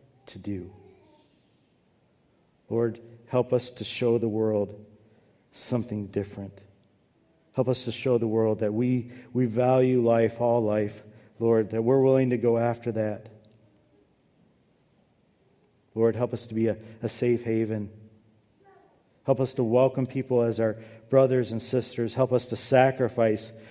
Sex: male